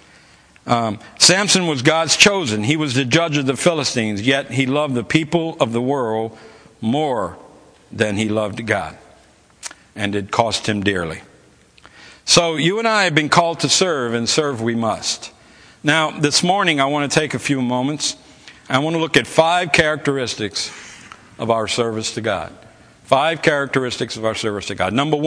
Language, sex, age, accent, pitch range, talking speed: English, male, 60-79, American, 110-145 Hz, 175 wpm